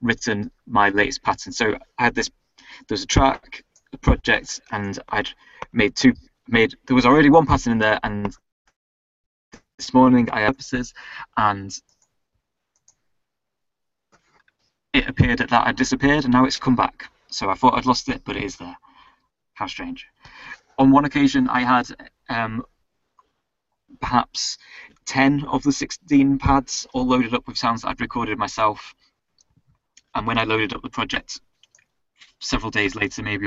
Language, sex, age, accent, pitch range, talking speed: English, male, 20-39, British, 100-135 Hz, 160 wpm